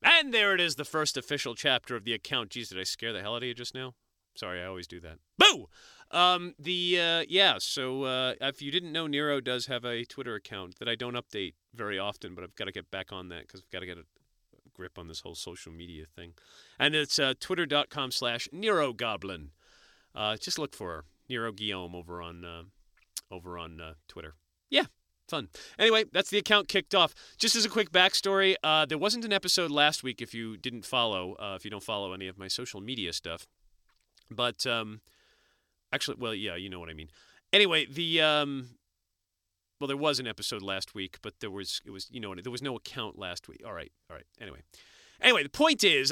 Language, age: English, 40-59